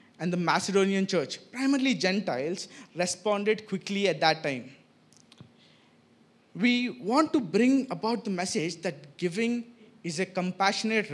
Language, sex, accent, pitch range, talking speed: English, male, Indian, 160-215 Hz, 125 wpm